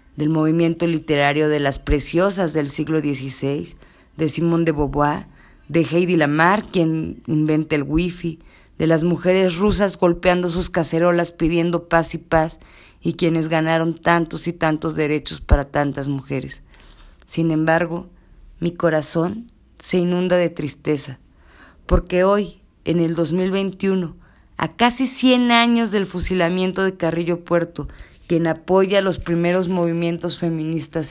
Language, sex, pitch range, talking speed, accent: Spanish, female, 155-185 Hz, 135 wpm, Mexican